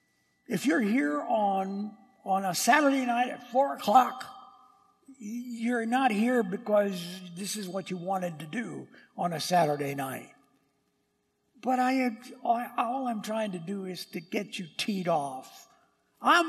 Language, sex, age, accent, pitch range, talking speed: English, male, 60-79, American, 150-205 Hz, 145 wpm